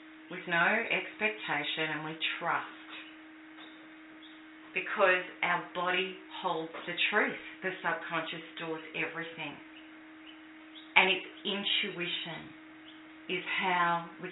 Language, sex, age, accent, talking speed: English, female, 30-49, Australian, 90 wpm